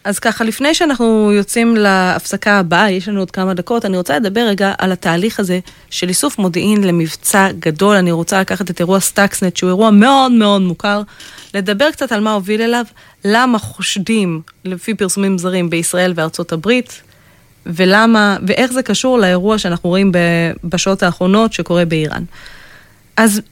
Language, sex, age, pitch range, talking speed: Hebrew, female, 20-39, 185-230 Hz, 155 wpm